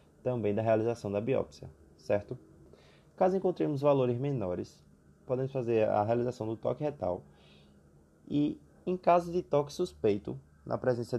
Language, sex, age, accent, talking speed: Portuguese, male, 20-39, Brazilian, 135 wpm